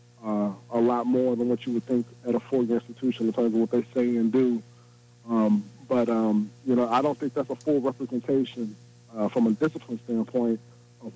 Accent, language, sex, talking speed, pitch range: American, English, male, 210 wpm, 115-125 Hz